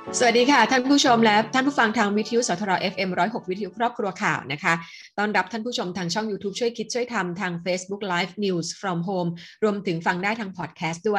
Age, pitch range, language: 20-39, 180-225 Hz, Thai